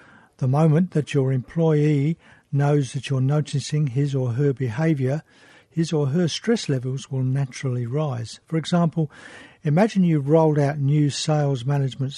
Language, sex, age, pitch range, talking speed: English, male, 60-79, 135-165 Hz, 150 wpm